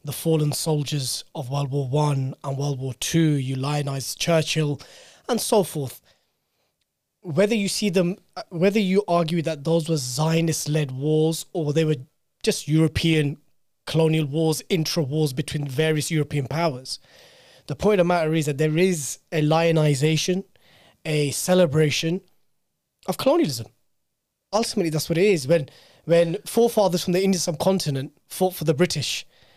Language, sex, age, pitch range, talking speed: English, male, 20-39, 150-180 Hz, 145 wpm